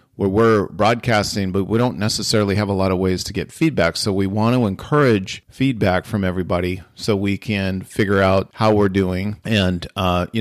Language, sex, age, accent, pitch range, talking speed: English, male, 40-59, American, 95-115 Hz, 190 wpm